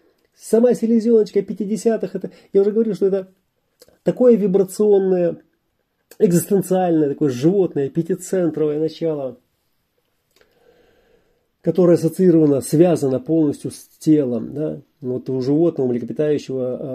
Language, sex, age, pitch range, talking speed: Russian, male, 30-49, 125-165 Hz, 100 wpm